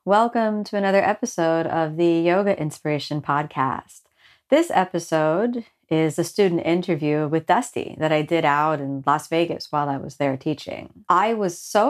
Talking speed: 160 wpm